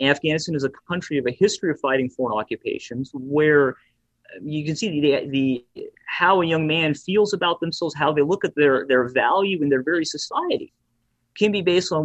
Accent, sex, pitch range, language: American, male, 135-195 Hz, English